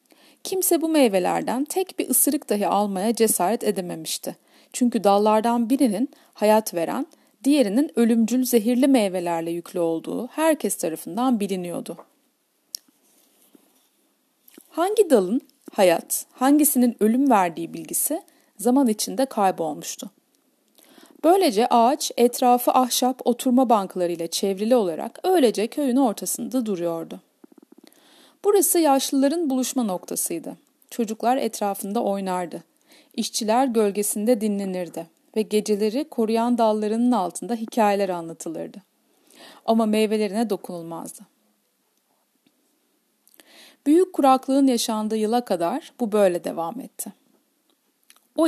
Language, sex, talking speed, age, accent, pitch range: Turkish, female, 95 wpm, 40-59, native, 205-285 Hz